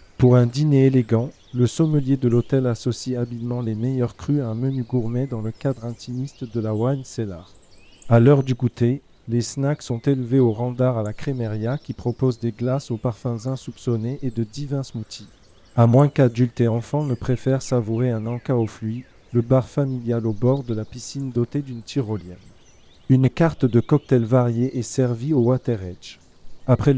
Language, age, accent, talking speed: French, 40-59, French, 185 wpm